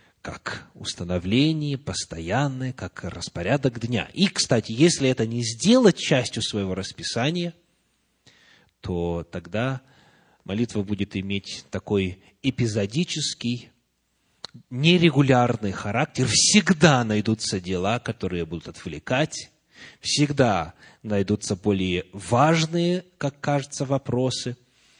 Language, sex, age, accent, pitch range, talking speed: Russian, male, 30-49, native, 100-145 Hz, 90 wpm